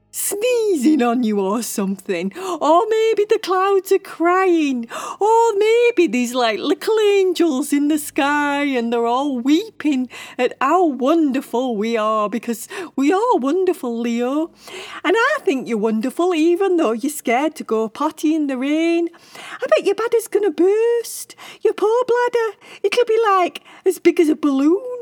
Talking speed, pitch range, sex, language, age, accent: 160 wpm, 240-365 Hz, female, English, 40-59, British